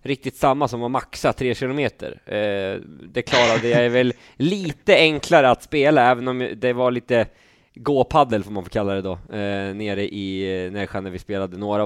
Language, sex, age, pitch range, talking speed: Swedish, male, 20-39, 100-140 Hz, 175 wpm